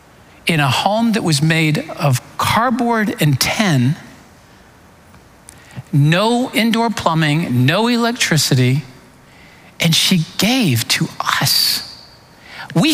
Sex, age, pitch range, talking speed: male, 50-69, 150-250 Hz, 95 wpm